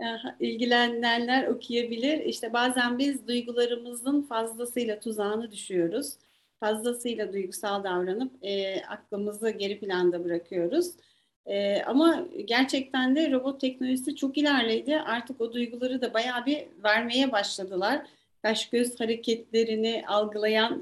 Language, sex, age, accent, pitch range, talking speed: Turkish, female, 40-59, native, 215-275 Hz, 105 wpm